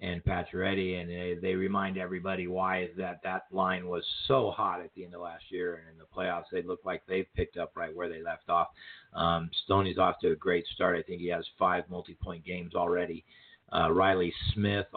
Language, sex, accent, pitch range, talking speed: English, male, American, 90-105 Hz, 210 wpm